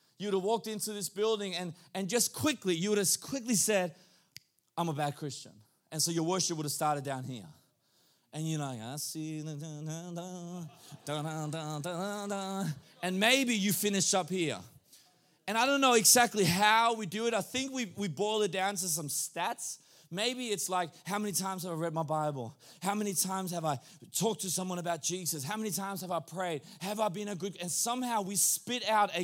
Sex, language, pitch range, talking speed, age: male, Swedish, 160-220 Hz, 195 wpm, 20-39